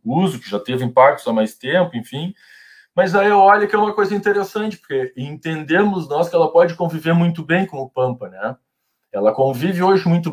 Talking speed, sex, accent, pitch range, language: 205 wpm, male, Brazilian, 130-195 Hz, Portuguese